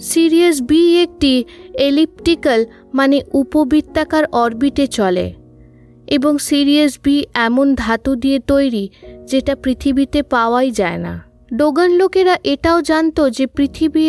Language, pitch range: Bengali, 235-295 Hz